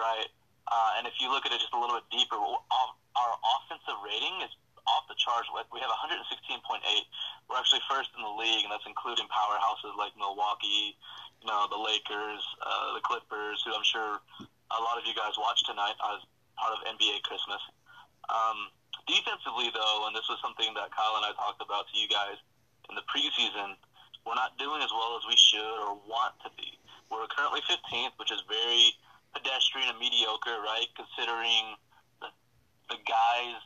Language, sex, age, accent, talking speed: English, male, 20-39, American, 180 wpm